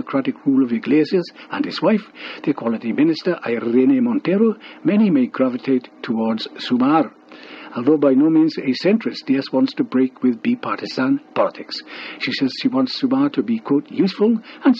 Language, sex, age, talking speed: English, male, 60-79, 160 wpm